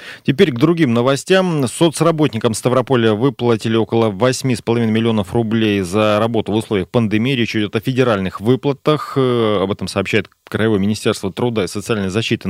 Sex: male